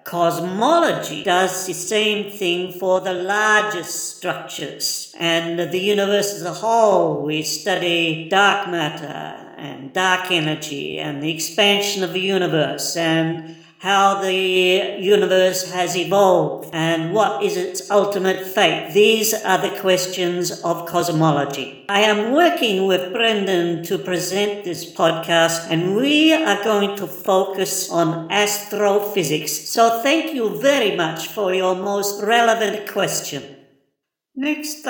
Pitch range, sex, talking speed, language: 185-240 Hz, female, 125 wpm, English